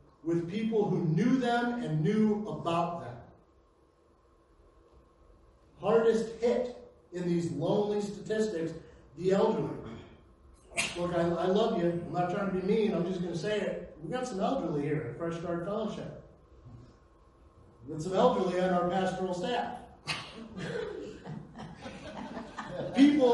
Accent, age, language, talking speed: American, 40-59, English, 135 wpm